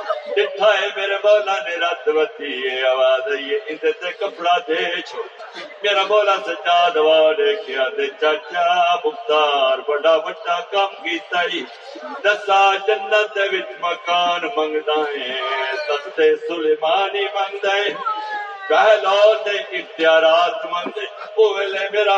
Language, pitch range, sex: Urdu, 175-230 Hz, male